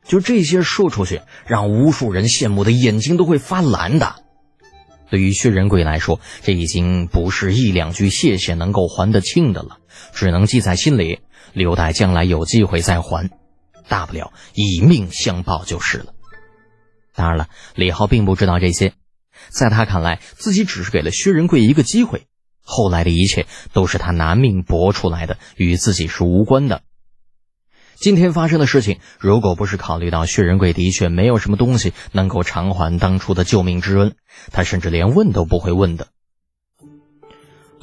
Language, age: Chinese, 20-39